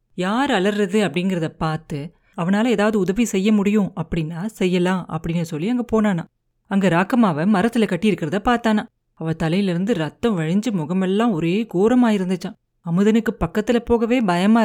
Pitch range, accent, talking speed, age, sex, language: 170-220 Hz, native, 130 wpm, 30-49, female, Tamil